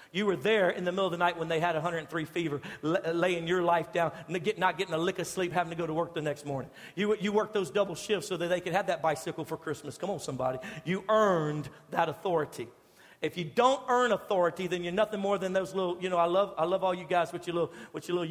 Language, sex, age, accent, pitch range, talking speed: English, male, 50-69, American, 170-205 Hz, 250 wpm